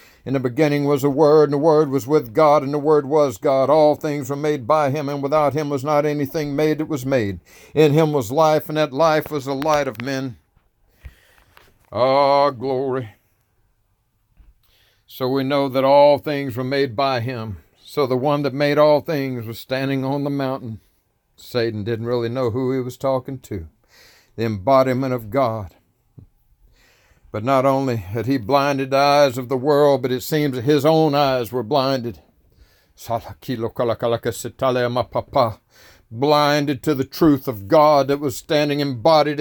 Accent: American